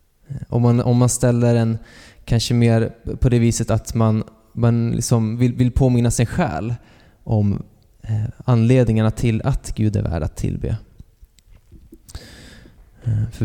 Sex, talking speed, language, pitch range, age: male, 135 wpm, Swedish, 100-120 Hz, 20-39